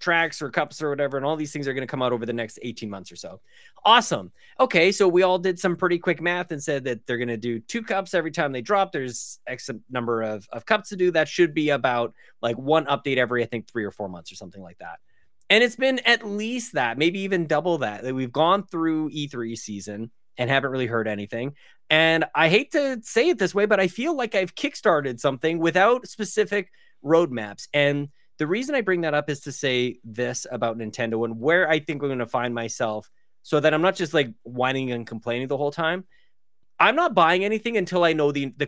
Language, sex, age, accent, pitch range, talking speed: English, male, 30-49, American, 125-180 Hz, 235 wpm